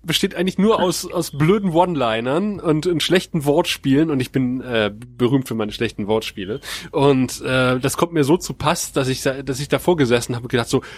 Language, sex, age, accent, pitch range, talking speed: German, male, 30-49, German, 130-165 Hz, 210 wpm